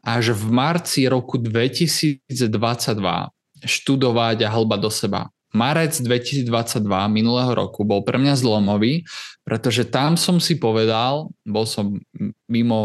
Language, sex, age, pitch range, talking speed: Slovak, male, 20-39, 115-140 Hz, 120 wpm